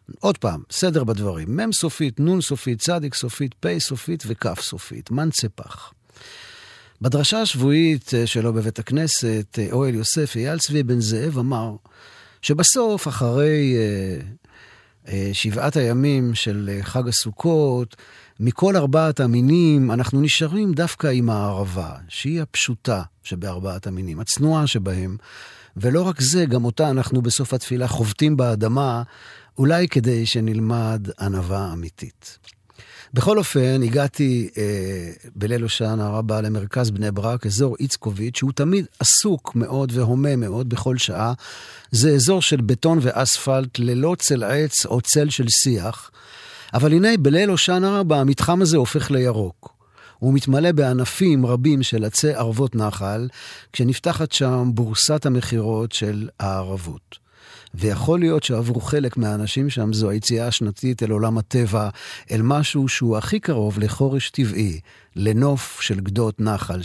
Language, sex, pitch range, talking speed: Hebrew, male, 110-145 Hz, 125 wpm